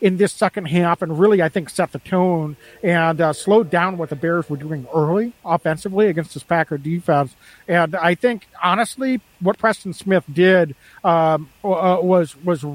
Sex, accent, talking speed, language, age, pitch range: male, American, 180 wpm, English, 50-69, 155-195 Hz